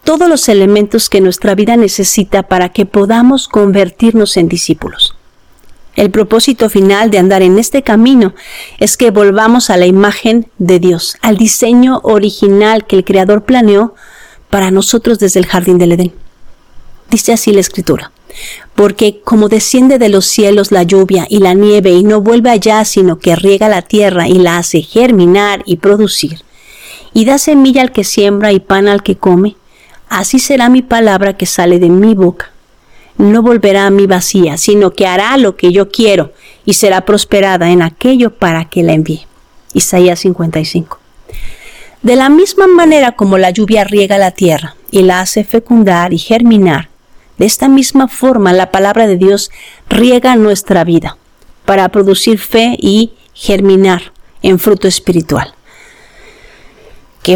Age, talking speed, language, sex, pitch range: 40-59, 160 wpm, Spanish, female, 185-230 Hz